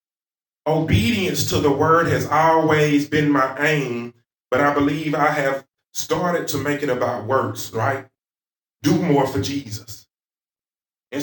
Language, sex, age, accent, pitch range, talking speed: English, male, 30-49, American, 115-150 Hz, 140 wpm